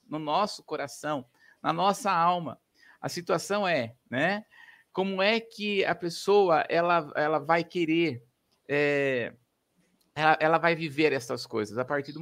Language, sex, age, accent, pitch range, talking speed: Portuguese, male, 50-69, Brazilian, 160-195 Hz, 140 wpm